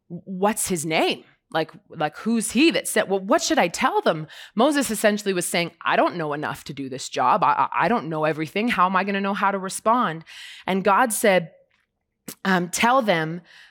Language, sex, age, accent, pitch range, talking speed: English, female, 20-39, American, 190-255 Hz, 205 wpm